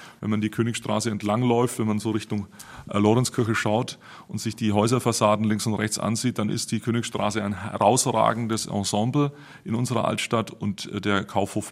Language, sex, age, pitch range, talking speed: German, male, 30-49, 105-125 Hz, 165 wpm